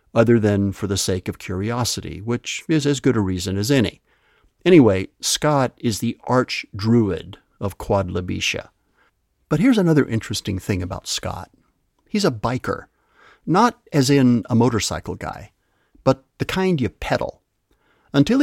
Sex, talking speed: male, 145 wpm